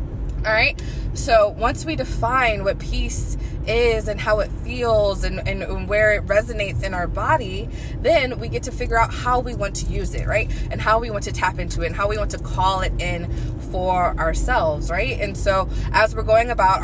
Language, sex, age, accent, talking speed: English, female, 20-39, American, 215 wpm